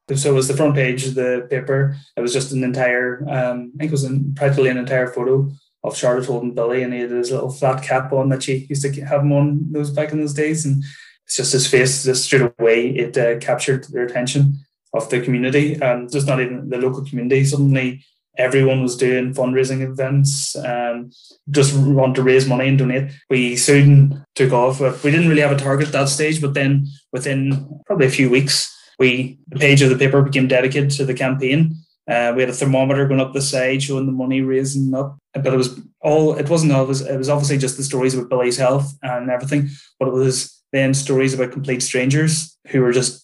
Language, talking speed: English, 220 wpm